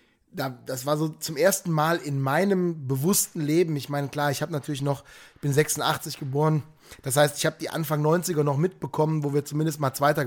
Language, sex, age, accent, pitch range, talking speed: German, male, 20-39, German, 145-170 Hz, 200 wpm